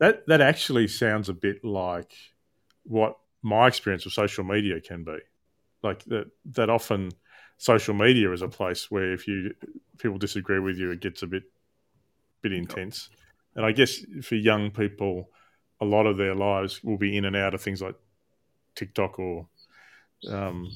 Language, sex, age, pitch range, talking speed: English, male, 30-49, 100-125 Hz, 175 wpm